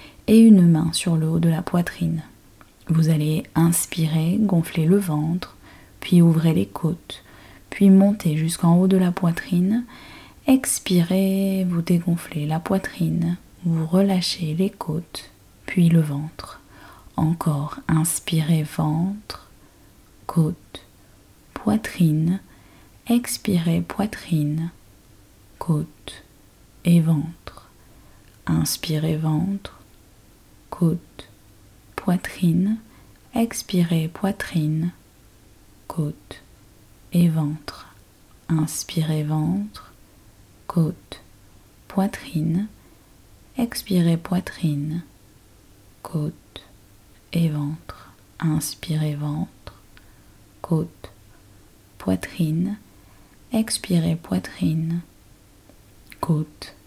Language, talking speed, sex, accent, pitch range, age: French, 75 wpm, female, French, 105-175 Hz, 20-39